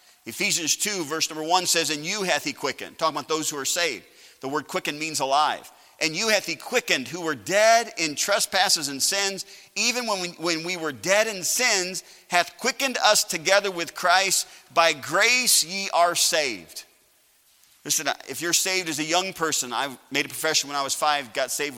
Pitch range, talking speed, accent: 155-210 Hz, 200 wpm, American